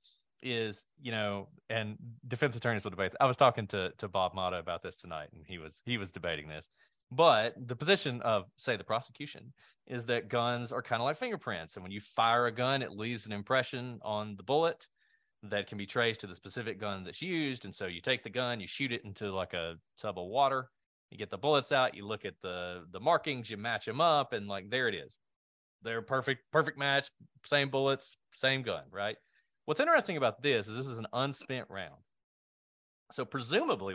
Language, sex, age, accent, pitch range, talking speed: English, male, 20-39, American, 100-135 Hz, 210 wpm